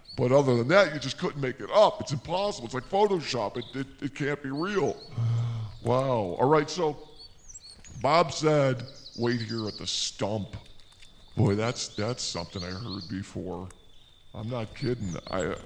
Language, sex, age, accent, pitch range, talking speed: English, female, 50-69, American, 100-140 Hz, 165 wpm